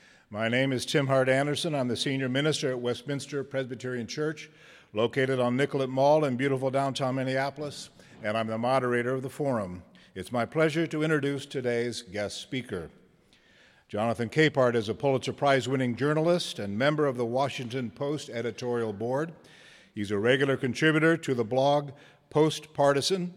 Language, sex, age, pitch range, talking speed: English, male, 60-79, 125-150 Hz, 155 wpm